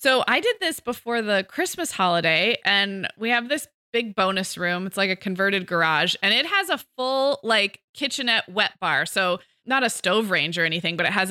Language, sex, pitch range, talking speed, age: English, female, 185-240 Hz, 205 wpm, 20-39